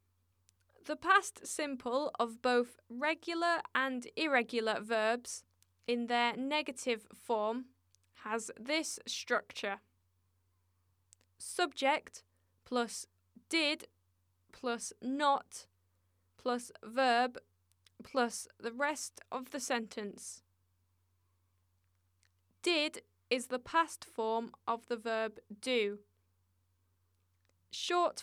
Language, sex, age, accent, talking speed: English, female, 10-29, British, 85 wpm